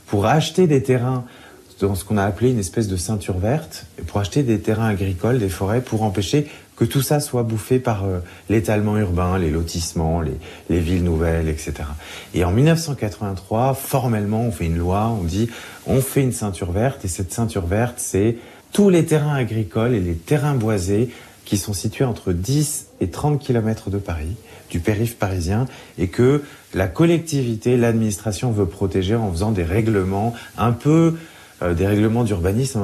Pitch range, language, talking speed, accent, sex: 95-130 Hz, French, 175 wpm, French, male